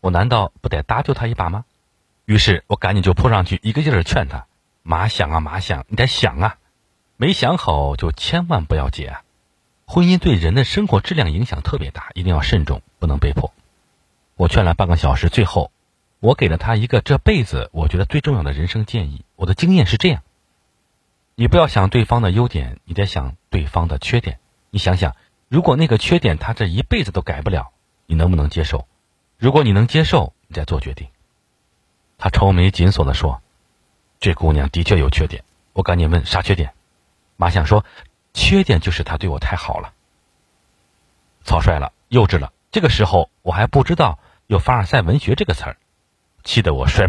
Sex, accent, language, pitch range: male, native, Chinese, 80-115 Hz